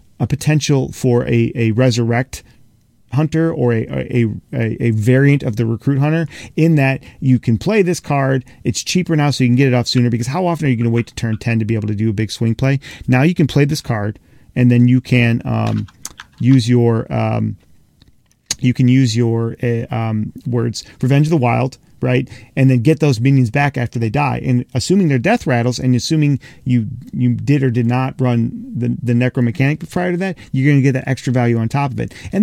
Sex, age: male, 40-59